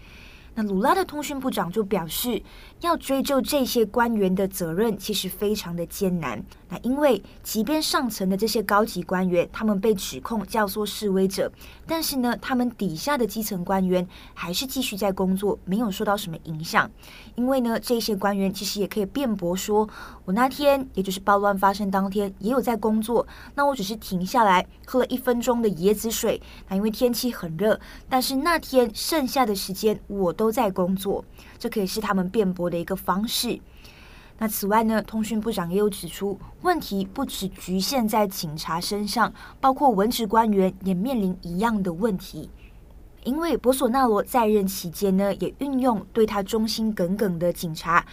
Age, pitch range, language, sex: 20-39, 190-235 Hz, Chinese, female